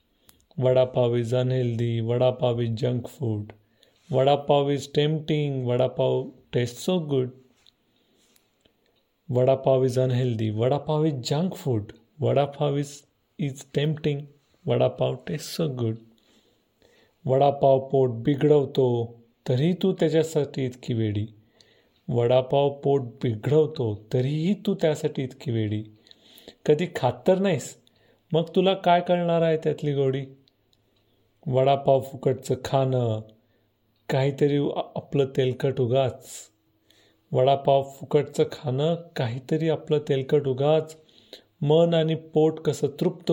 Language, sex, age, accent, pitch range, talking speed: Marathi, male, 40-59, native, 120-150 Hz, 110 wpm